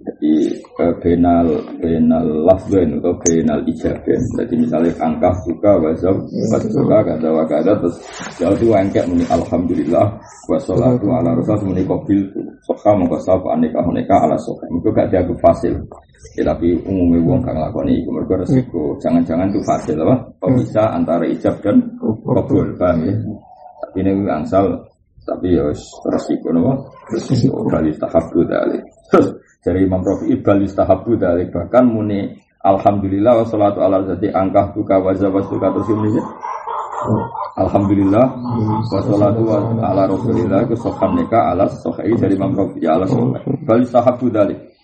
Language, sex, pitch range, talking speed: Malay, male, 95-115 Hz, 135 wpm